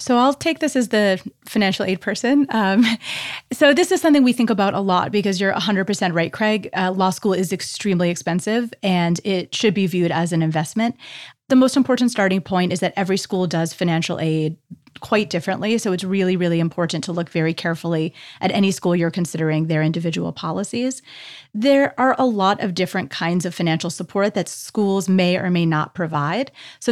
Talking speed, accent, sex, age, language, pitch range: 195 wpm, American, female, 30-49, English, 175-215 Hz